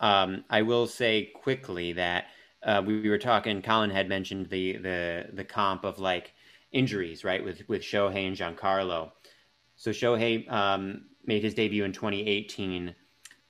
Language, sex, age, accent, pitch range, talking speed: English, male, 30-49, American, 95-115 Hz, 155 wpm